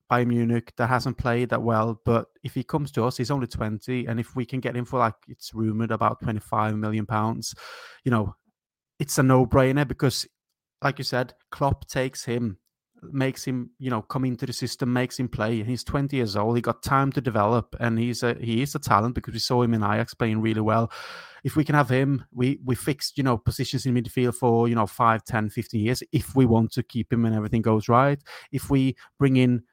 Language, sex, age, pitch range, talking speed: English, male, 30-49, 115-135 Hz, 225 wpm